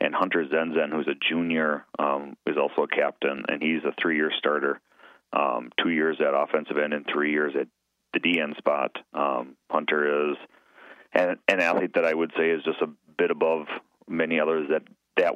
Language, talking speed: English, 190 wpm